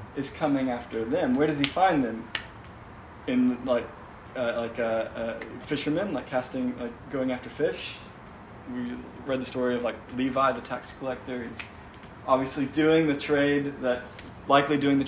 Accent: American